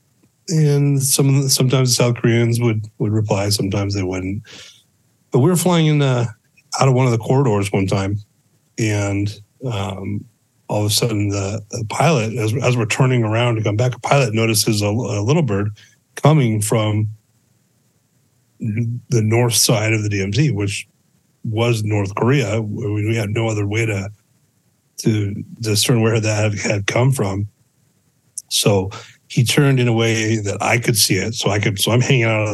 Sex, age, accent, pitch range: male, 40-59, American, 105-125 Hz